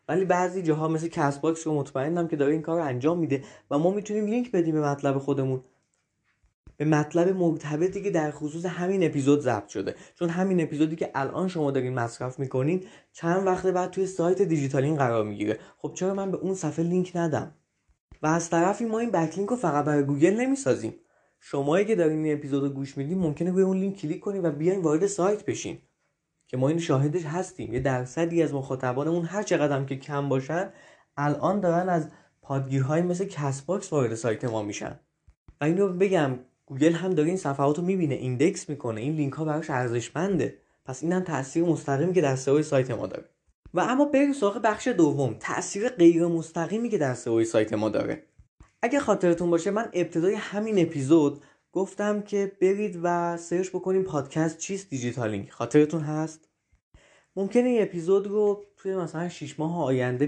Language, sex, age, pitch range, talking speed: Persian, male, 20-39, 140-185 Hz, 175 wpm